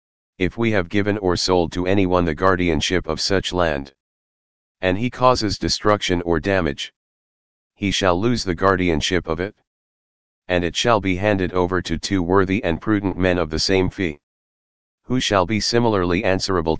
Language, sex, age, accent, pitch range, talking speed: English, male, 40-59, American, 85-100 Hz, 170 wpm